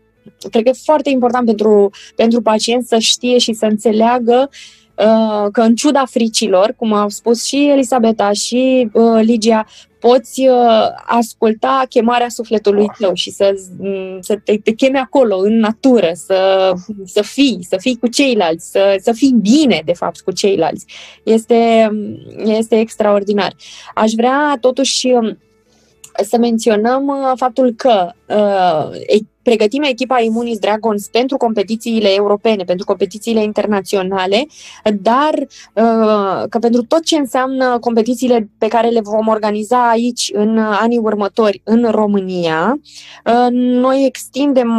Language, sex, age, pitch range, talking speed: Romanian, female, 20-39, 205-245 Hz, 125 wpm